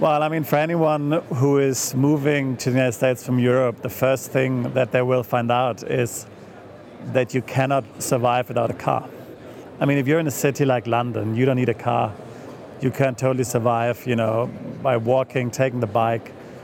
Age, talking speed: 40-59, 200 wpm